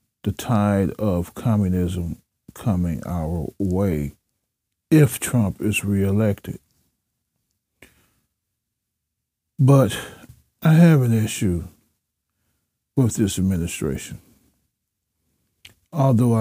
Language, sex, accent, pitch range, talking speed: English, male, American, 95-140 Hz, 75 wpm